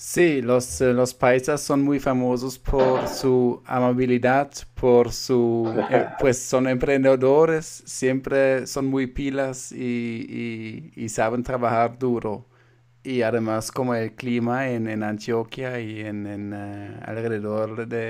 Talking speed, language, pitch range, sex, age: 135 wpm, English, 115-130 Hz, male, 20-39